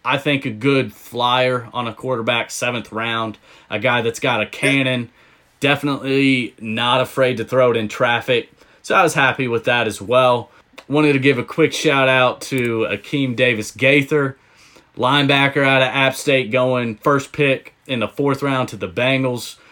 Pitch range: 110-135 Hz